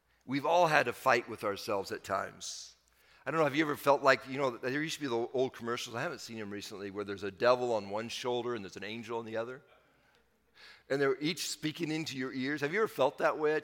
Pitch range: 135-190 Hz